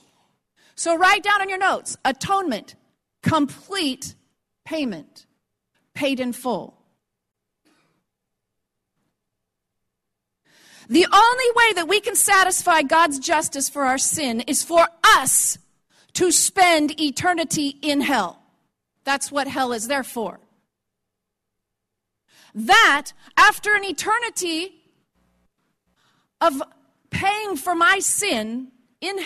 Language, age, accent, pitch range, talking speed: English, 40-59, American, 245-360 Hz, 100 wpm